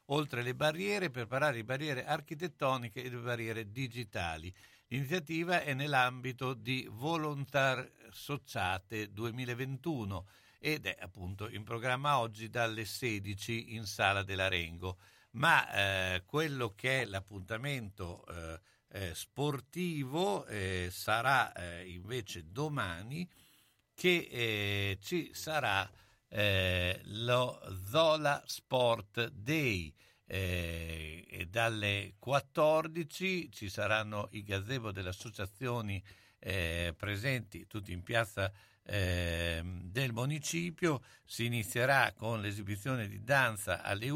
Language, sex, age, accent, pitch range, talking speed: Italian, male, 60-79, native, 95-135 Hz, 105 wpm